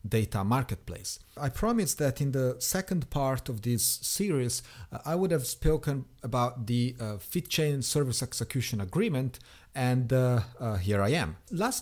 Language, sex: English, male